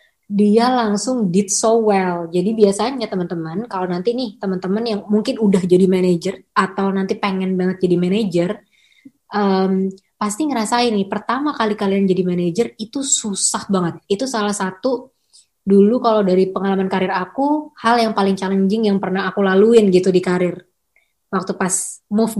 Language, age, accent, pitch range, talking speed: English, 20-39, Indonesian, 195-265 Hz, 155 wpm